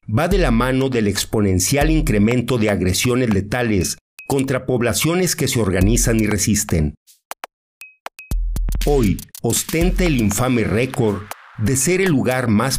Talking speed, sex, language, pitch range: 125 wpm, male, Spanish, 100-130 Hz